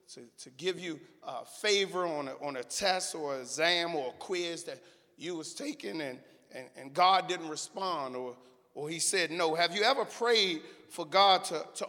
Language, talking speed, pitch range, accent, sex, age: English, 200 wpm, 170-225 Hz, American, male, 40-59